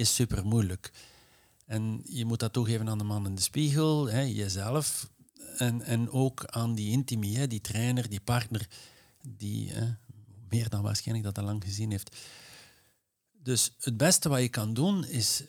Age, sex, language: 50-69, male, Dutch